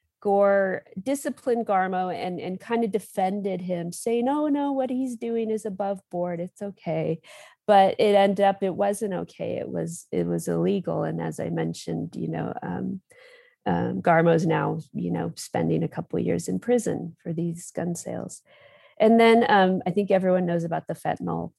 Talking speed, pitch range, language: 185 wpm, 165-200 Hz, English